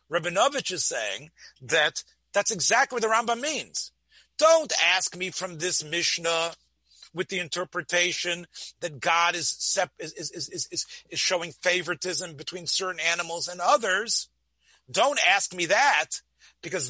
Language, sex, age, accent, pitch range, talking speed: English, male, 40-59, American, 170-225 Hz, 135 wpm